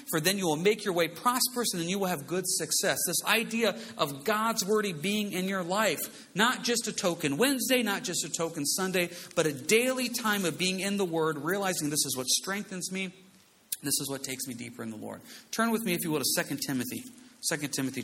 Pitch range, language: 125-180 Hz, English